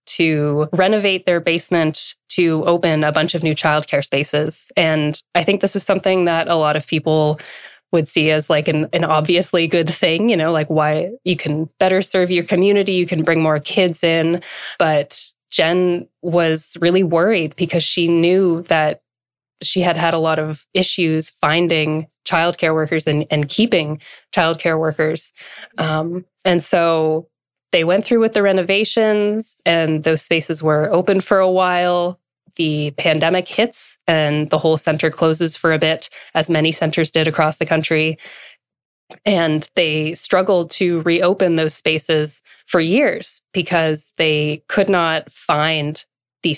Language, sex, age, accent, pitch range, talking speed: English, female, 20-39, American, 155-180 Hz, 155 wpm